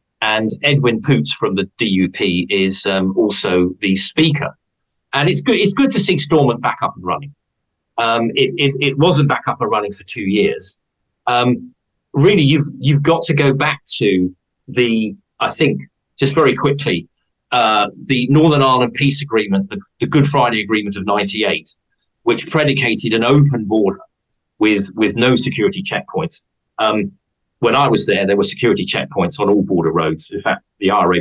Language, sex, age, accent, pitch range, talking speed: English, male, 40-59, British, 100-140 Hz, 175 wpm